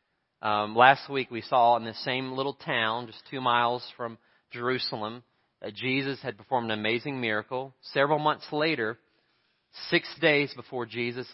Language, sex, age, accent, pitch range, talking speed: English, male, 30-49, American, 120-150 Hz, 155 wpm